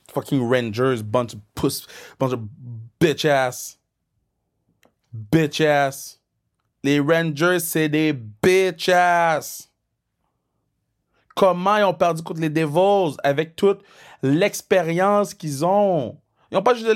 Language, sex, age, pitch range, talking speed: French, male, 30-49, 135-195 Hz, 115 wpm